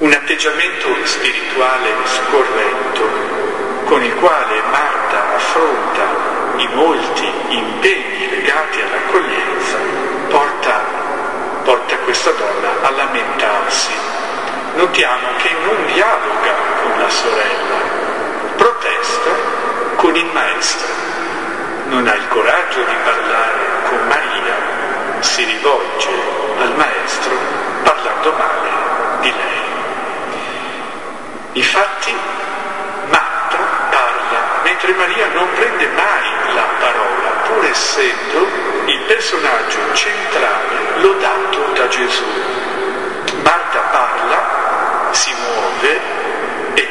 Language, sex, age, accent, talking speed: Italian, male, 50-69, native, 90 wpm